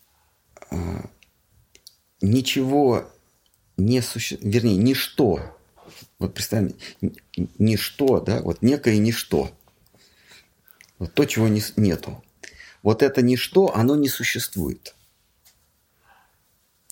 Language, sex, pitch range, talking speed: Russian, male, 95-120 Hz, 80 wpm